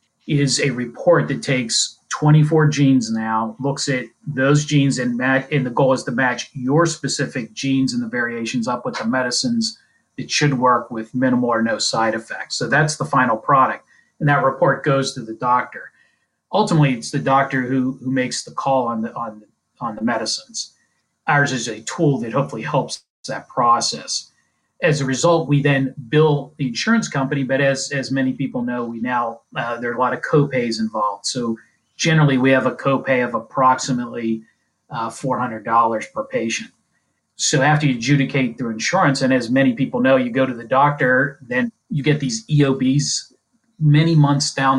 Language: English